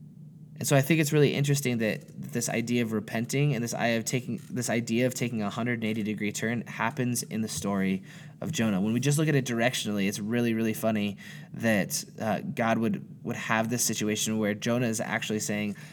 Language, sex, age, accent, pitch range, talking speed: English, male, 20-39, American, 110-140 Hz, 195 wpm